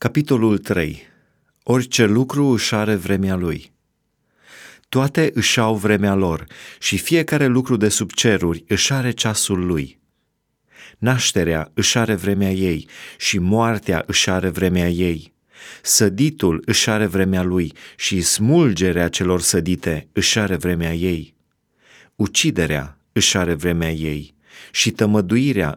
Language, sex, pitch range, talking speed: Romanian, male, 85-110 Hz, 125 wpm